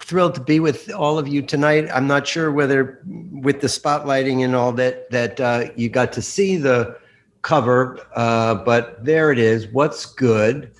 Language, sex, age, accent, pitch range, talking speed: English, male, 50-69, American, 110-130 Hz, 185 wpm